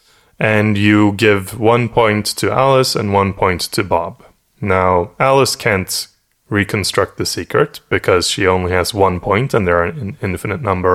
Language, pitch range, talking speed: English, 90-110 Hz, 165 wpm